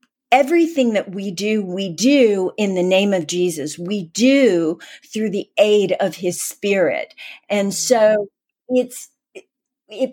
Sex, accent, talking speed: female, American, 130 wpm